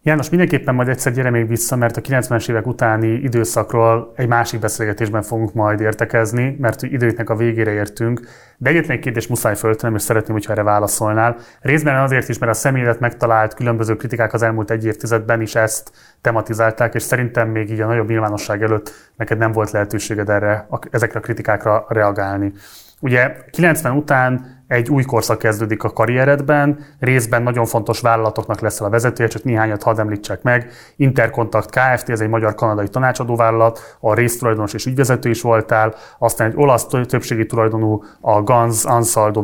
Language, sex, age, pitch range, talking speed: Hungarian, male, 30-49, 110-125 Hz, 165 wpm